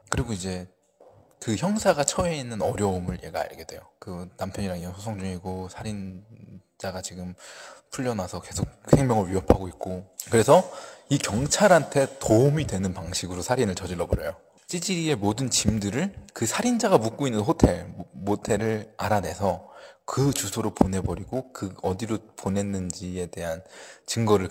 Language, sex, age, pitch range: Korean, male, 20-39, 95-135 Hz